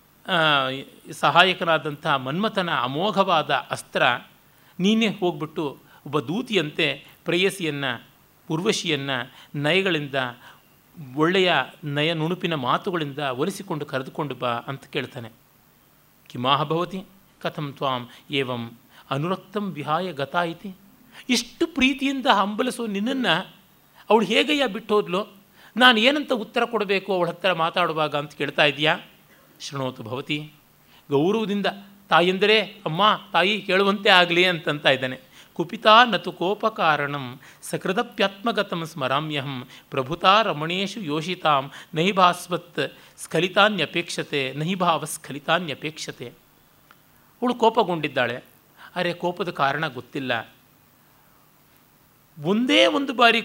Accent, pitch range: native, 150-200 Hz